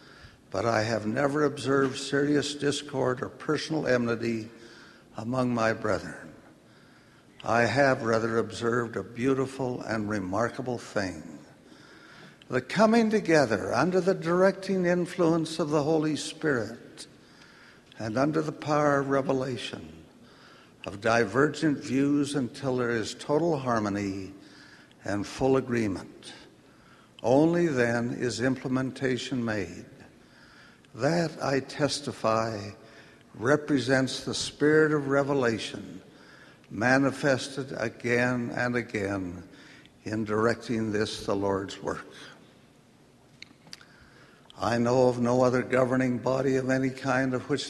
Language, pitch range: English, 115-145 Hz